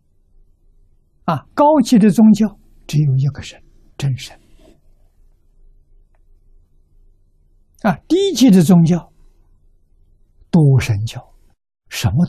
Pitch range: 80-130 Hz